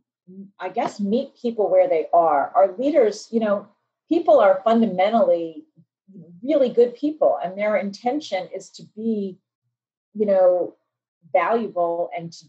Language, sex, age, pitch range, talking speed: English, female, 40-59, 170-215 Hz, 135 wpm